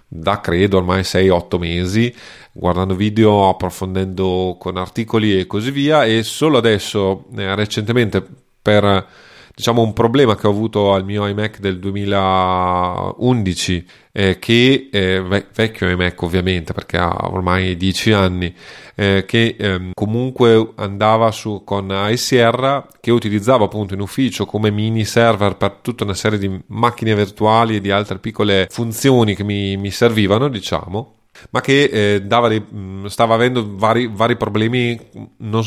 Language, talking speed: Italian, 140 wpm